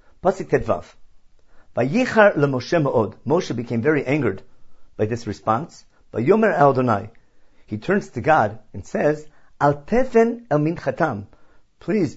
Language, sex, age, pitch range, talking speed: English, male, 50-69, 115-165 Hz, 70 wpm